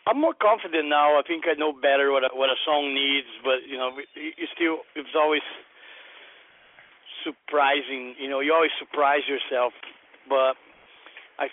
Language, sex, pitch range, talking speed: English, male, 130-150 Hz, 165 wpm